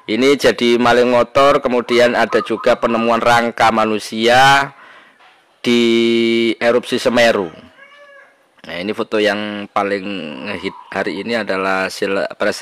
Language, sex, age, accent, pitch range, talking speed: Indonesian, male, 20-39, native, 100-115 Hz, 110 wpm